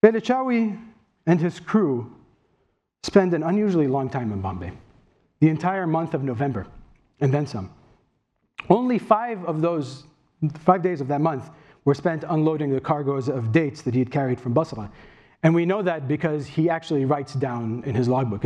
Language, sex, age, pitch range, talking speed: English, male, 40-59, 135-175 Hz, 170 wpm